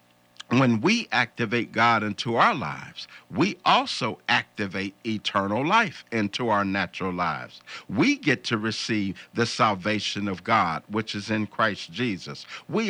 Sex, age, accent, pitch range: male, 50-69, American, 110-170 Hz